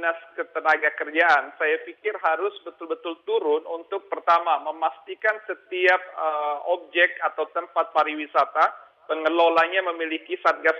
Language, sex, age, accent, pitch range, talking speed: Indonesian, male, 40-59, native, 150-175 Hz, 105 wpm